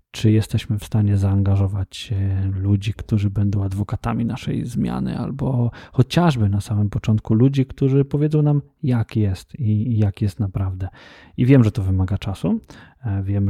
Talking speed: 145 wpm